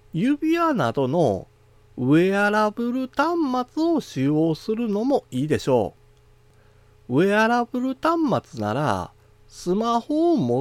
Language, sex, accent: Japanese, male, native